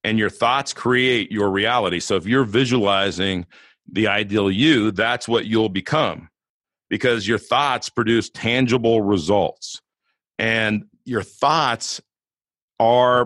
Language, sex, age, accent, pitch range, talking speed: English, male, 40-59, American, 105-130 Hz, 120 wpm